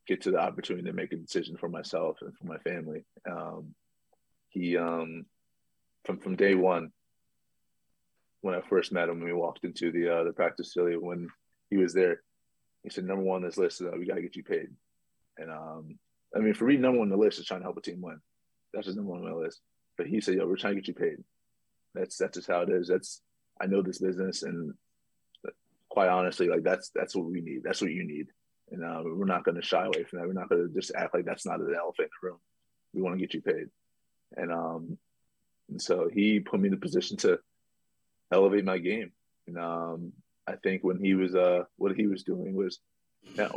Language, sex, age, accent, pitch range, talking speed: English, male, 30-49, American, 85-110 Hz, 235 wpm